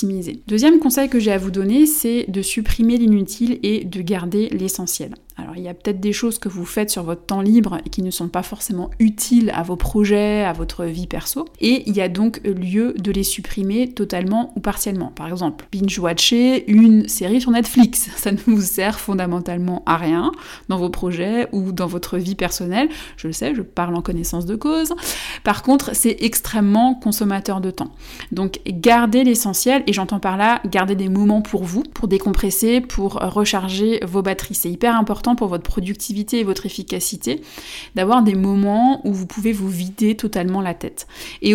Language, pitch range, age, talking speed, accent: French, 185-230 Hz, 20-39, 190 wpm, French